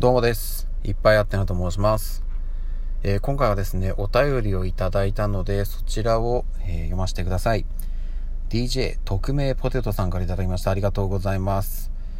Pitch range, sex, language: 95-130 Hz, male, Japanese